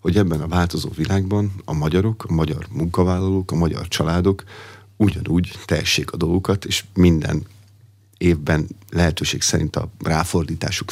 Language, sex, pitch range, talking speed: Hungarian, male, 80-100 Hz, 130 wpm